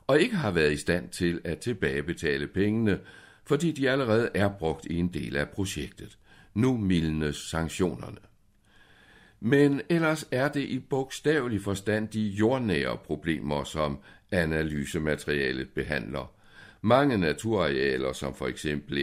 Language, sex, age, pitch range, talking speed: Danish, male, 60-79, 75-110 Hz, 130 wpm